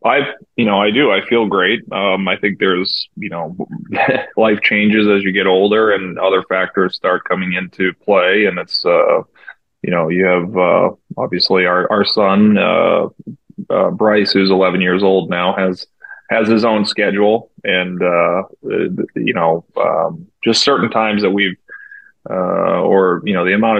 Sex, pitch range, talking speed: male, 90-110 Hz, 170 wpm